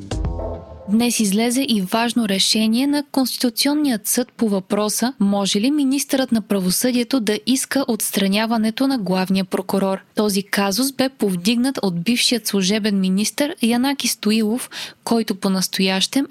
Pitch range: 200-250 Hz